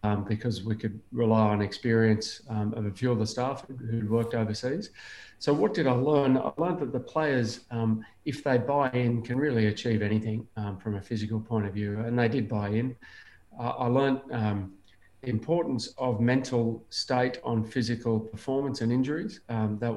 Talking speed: 195 wpm